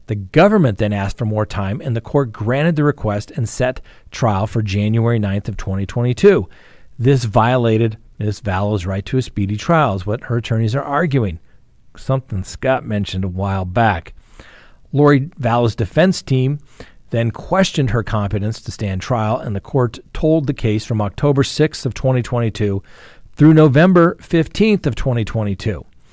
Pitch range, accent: 105-135 Hz, American